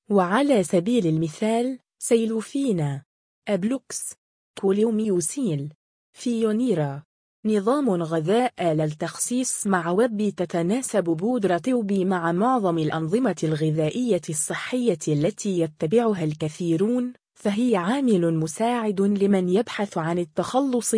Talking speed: 90 wpm